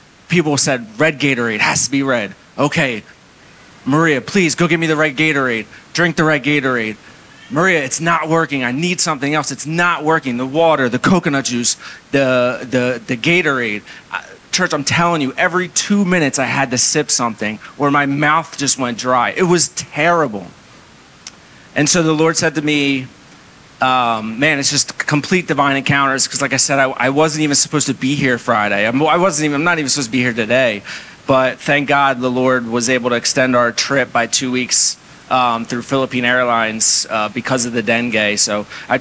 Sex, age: male, 30-49